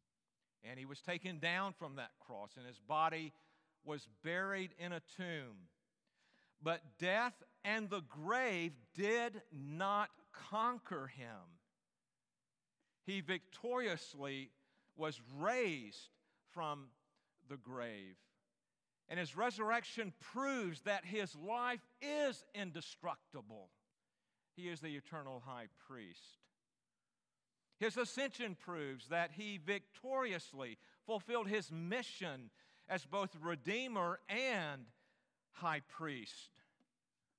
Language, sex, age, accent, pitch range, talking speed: English, male, 50-69, American, 145-205 Hz, 100 wpm